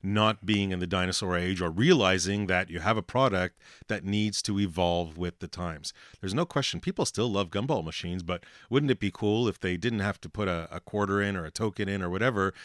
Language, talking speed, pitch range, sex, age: English, 230 wpm, 90-105 Hz, male, 30-49